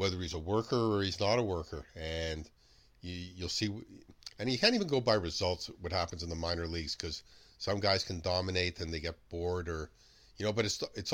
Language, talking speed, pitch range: English, 220 wpm, 90-110 Hz